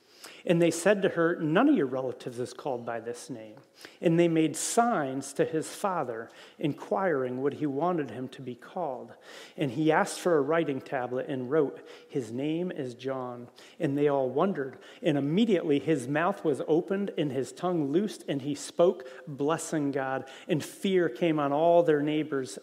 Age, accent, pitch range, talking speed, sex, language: 40-59, American, 135-175 Hz, 180 wpm, male, English